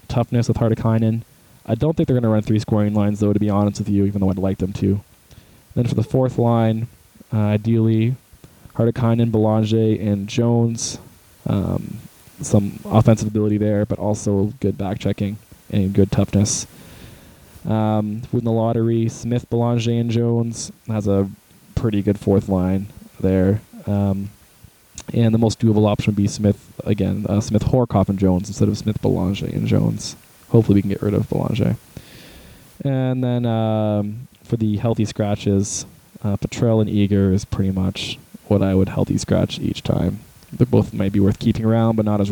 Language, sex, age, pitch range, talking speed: English, male, 20-39, 100-115 Hz, 175 wpm